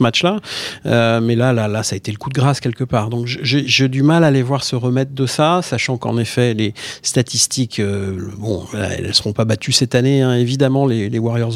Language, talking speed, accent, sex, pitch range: French, 245 wpm, French, male, 110-135 Hz